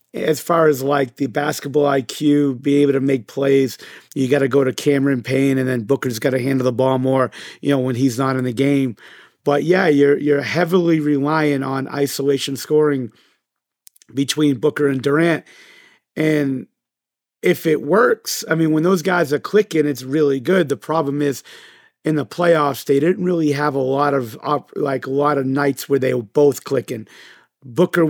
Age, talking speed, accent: 40-59, 185 wpm, American